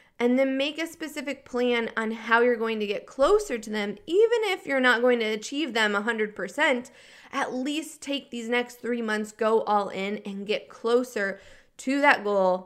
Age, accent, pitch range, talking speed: 20-39, American, 200-250 Hz, 190 wpm